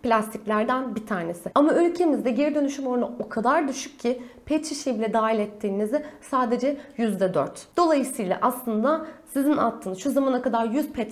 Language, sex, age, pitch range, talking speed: Turkish, female, 30-49, 210-290 Hz, 150 wpm